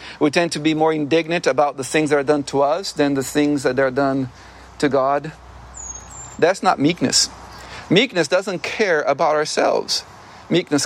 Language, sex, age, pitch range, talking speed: English, male, 40-59, 150-230 Hz, 170 wpm